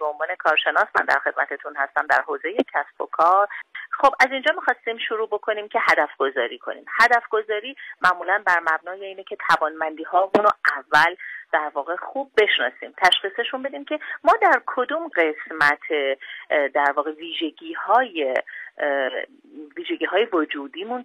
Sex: female